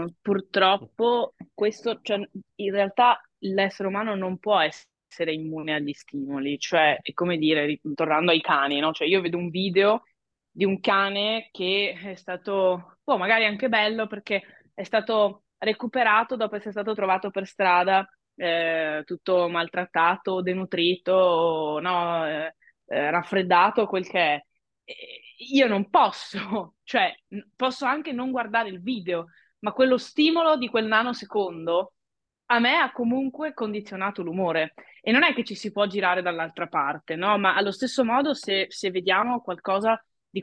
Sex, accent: female, native